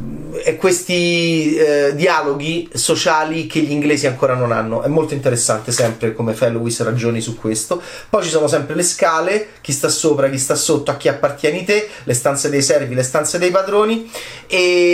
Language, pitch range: Italian, 130-175 Hz